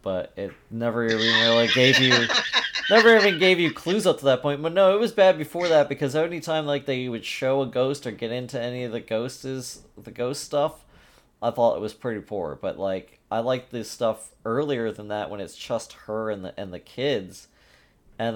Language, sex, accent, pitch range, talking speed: English, male, American, 105-130 Hz, 220 wpm